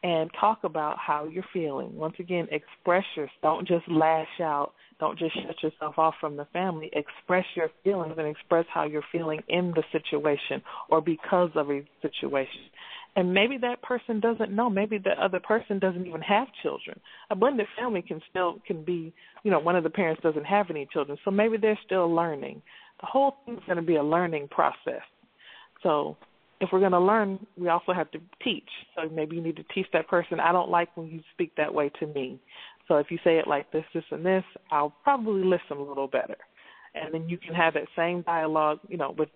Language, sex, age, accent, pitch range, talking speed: English, female, 40-59, American, 150-185 Hz, 210 wpm